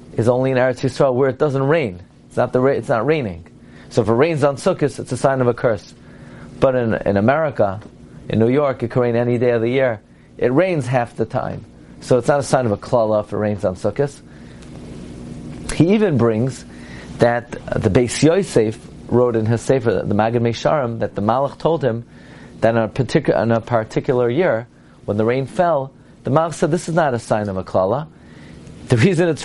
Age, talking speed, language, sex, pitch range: 30-49, 210 wpm, English, male, 115-150 Hz